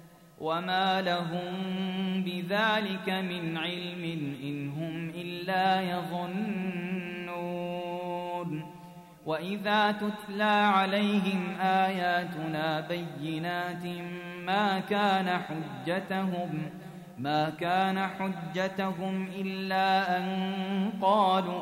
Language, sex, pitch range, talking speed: Arabic, male, 175-210 Hz, 65 wpm